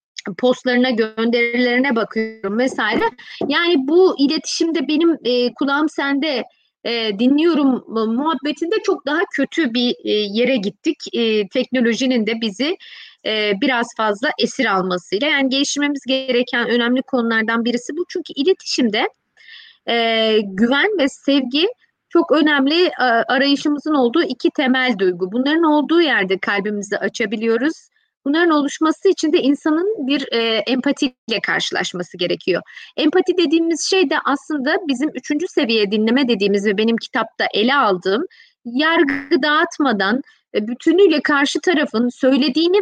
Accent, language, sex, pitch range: native, Turkish, female, 235-325 Hz